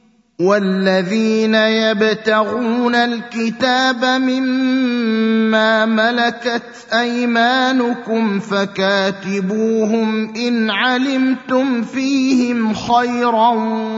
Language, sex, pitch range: Arabic, male, 220-255 Hz